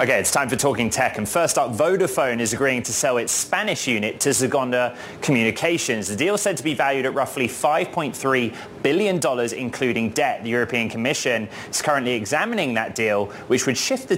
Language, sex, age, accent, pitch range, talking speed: English, male, 20-39, British, 115-145 Hz, 190 wpm